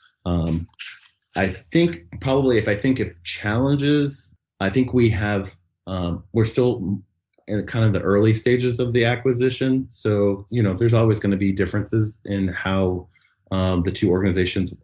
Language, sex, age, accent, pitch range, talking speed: English, male, 30-49, American, 90-110 Hz, 160 wpm